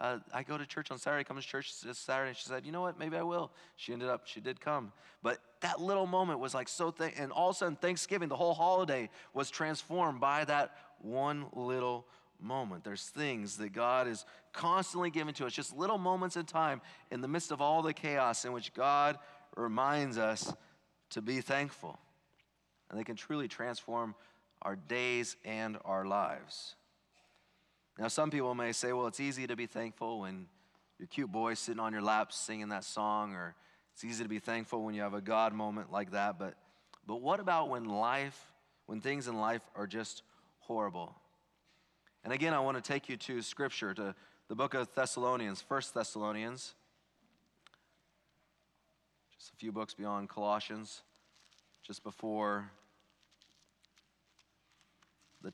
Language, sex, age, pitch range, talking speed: English, male, 30-49, 110-145 Hz, 175 wpm